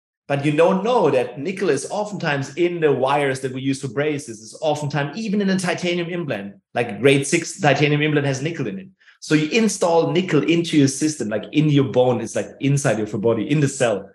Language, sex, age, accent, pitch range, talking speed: English, male, 30-49, German, 130-165 Hz, 215 wpm